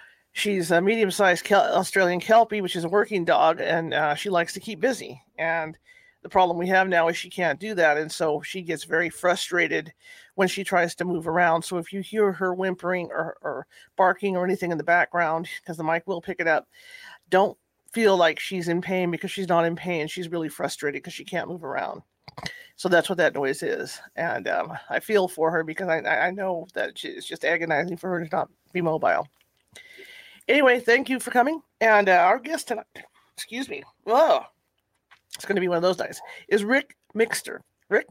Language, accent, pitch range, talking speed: English, American, 170-215 Hz, 205 wpm